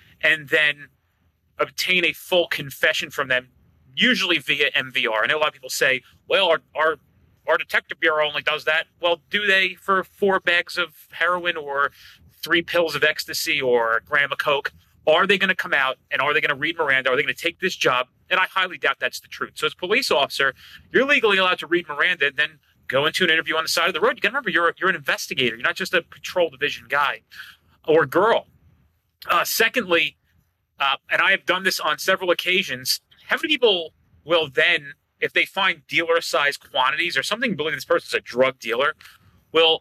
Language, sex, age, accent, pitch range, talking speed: English, male, 30-49, American, 150-190 Hz, 215 wpm